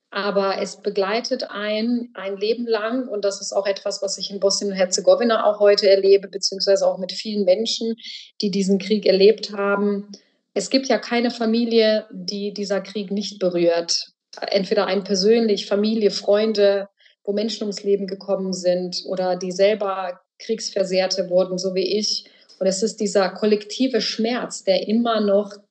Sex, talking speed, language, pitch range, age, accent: female, 160 wpm, German, 185-210 Hz, 30-49, German